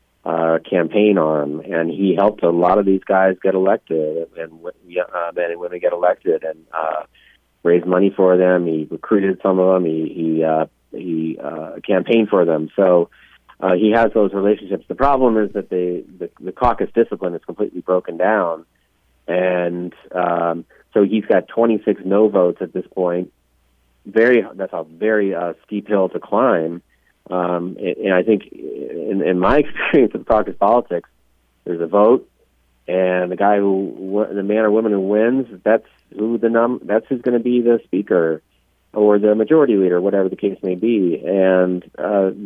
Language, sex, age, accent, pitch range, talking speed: English, male, 30-49, American, 85-105 Hz, 175 wpm